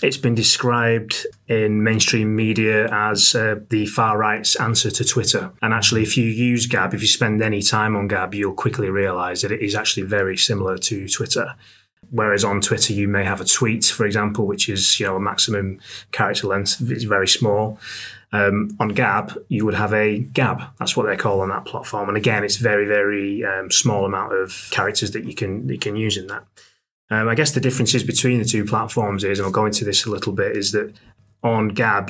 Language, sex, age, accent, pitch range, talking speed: English, male, 20-39, British, 100-115 Hz, 215 wpm